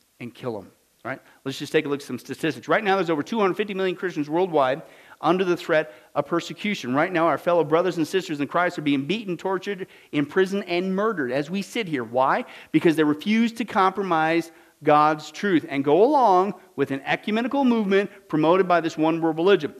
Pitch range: 155-210 Hz